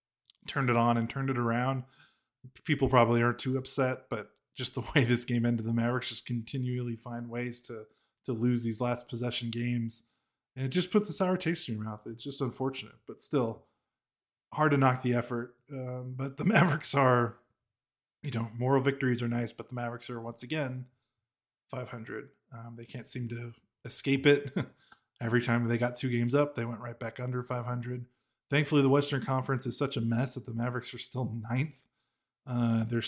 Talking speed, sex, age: 190 wpm, male, 20-39